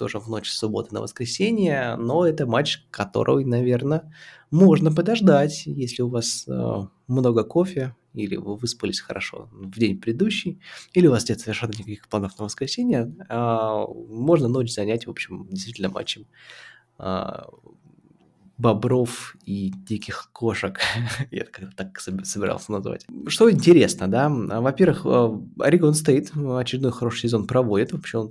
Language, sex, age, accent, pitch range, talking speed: Russian, male, 20-39, native, 105-140 Hz, 140 wpm